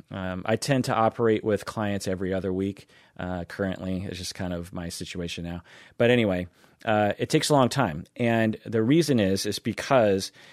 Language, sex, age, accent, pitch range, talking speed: English, male, 30-49, American, 95-115 Hz, 190 wpm